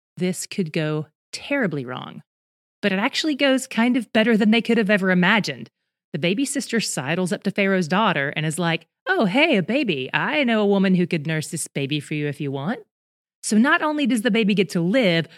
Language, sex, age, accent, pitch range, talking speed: English, female, 30-49, American, 160-220 Hz, 220 wpm